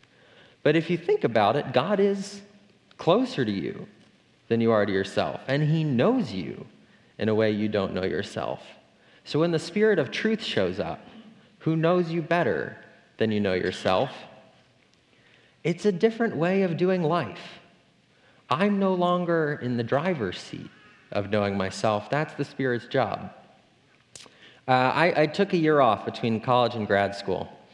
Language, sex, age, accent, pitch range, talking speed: English, male, 30-49, American, 105-160 Hz, 165 wpm